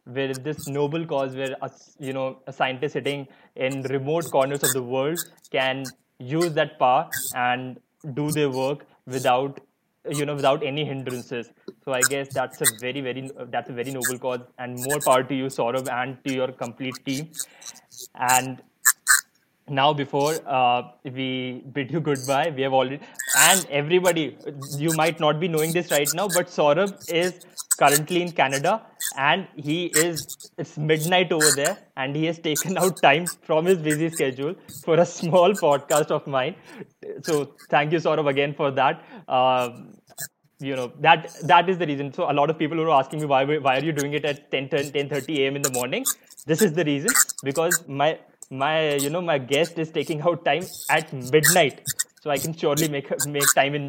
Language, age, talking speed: English, 20-39, 190 wpm